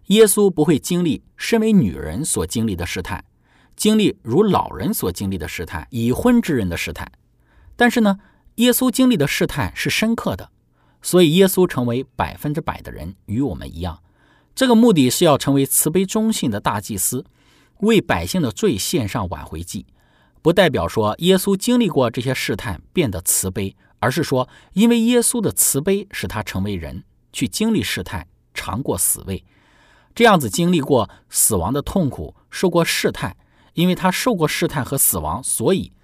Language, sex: Chinese, male